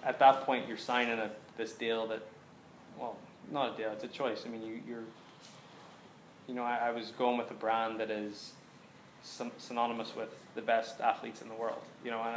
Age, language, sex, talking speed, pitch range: 20-39, English, male, 205 wpm, 110-130 Hz